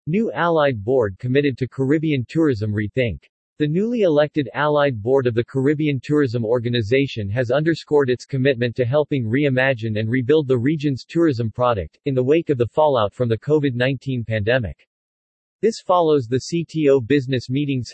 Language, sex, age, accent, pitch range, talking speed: English, male, 40-59, American, 120-150 Hz, 155 wpm